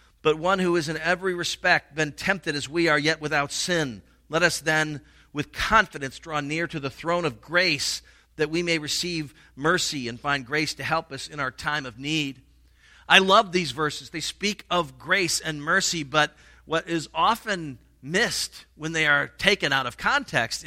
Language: English